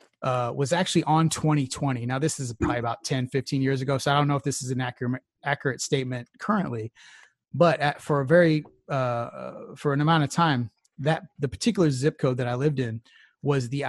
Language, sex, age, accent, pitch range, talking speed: English, male, 30-49, American, 125-150 Hz, 205 wpm